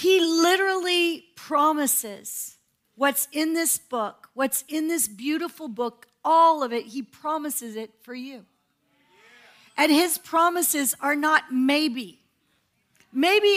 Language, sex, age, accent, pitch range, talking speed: English, female, 40-59, American, 260-335 Hz, 120 wpm